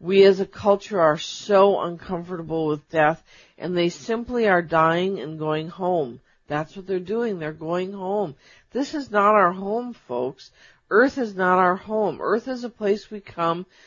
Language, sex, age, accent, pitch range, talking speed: English, female, 50-69, American, 180-245 Hz, 175 wpm